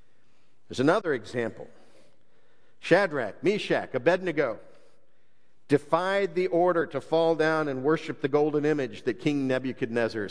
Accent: American